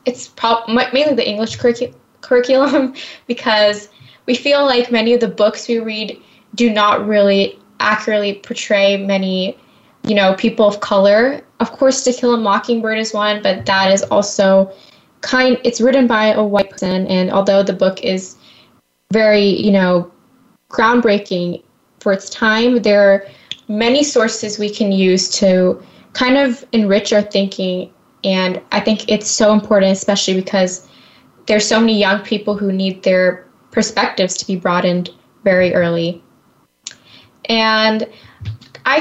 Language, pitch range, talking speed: English, 195-235 Hz, 145 wpm